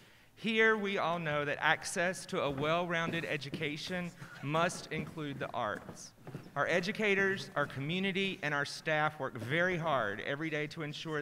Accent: American